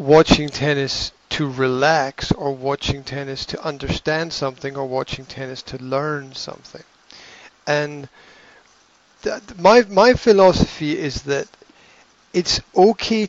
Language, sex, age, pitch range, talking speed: English, male, 40-59, 130-155 Hz, 115 wpm